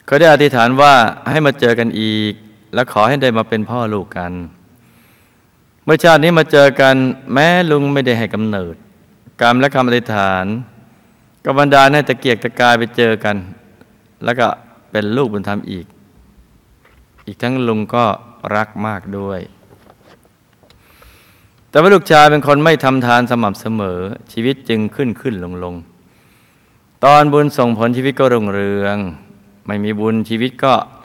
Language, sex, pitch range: Thai, male, 100-120 Hz